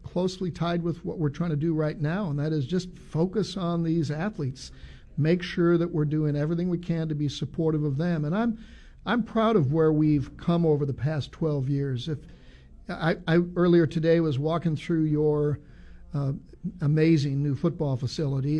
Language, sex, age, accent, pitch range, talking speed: English, male, 50-69, American, 150-175 Hz, 185 wpm